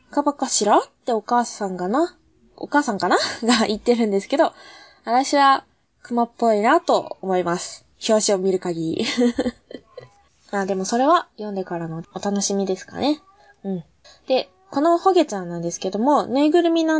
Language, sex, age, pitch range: Japanese, female, 20-39, 200-275 Hz